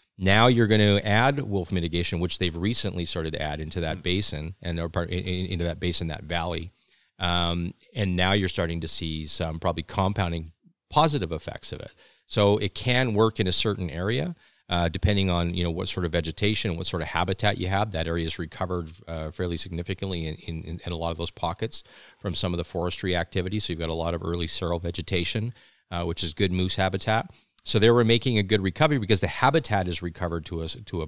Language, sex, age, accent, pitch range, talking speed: English, male, 40-59, American, 85-105 Hz, 215 wpm